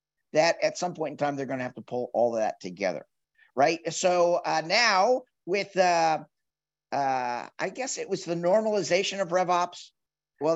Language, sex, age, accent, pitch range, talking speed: English, male, 50-69, American, 150-195 Hz, 180 wpm